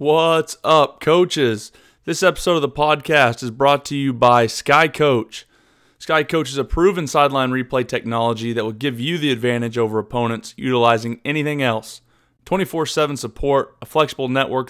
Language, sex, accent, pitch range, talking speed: English, male, American, 120-145 Hz, 160 wpm